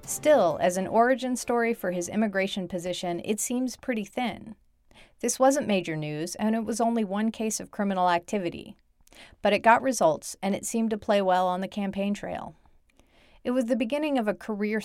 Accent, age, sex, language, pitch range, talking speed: American, 40-59, female, English, 170-220 Hz, 190 wpm